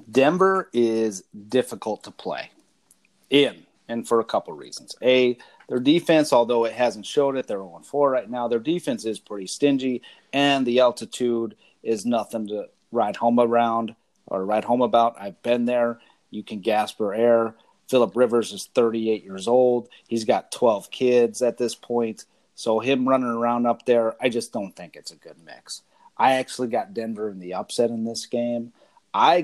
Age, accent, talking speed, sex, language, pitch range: 30-49, American, 175 wpm, male, English, 110-135 Hz